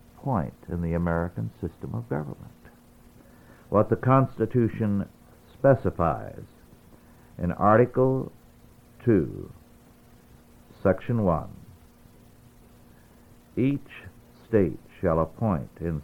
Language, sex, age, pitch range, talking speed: English, male, 60-79, 85-115 Hz, 80 wpm